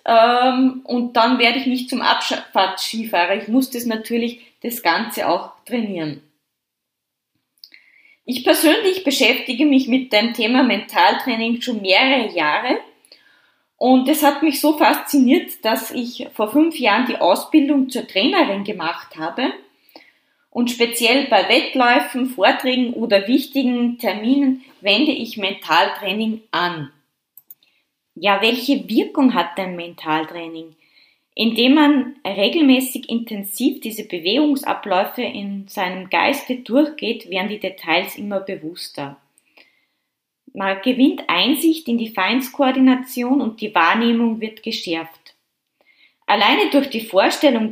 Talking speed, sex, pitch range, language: 115 wpm, female, 200-275 Hz, German